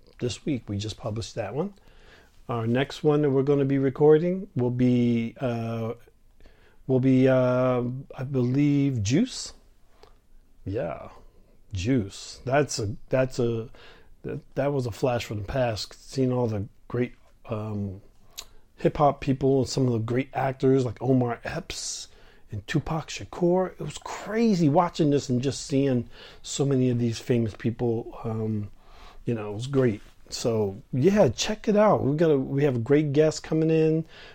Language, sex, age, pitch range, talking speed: English, male, 40-59, 115-150 Hz, 160 wpm